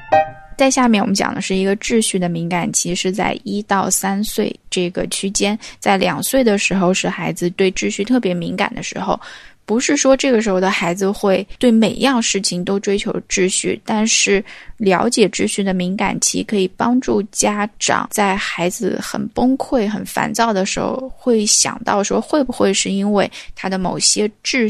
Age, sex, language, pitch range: 10-29, female, Chinese, 190-225 Hz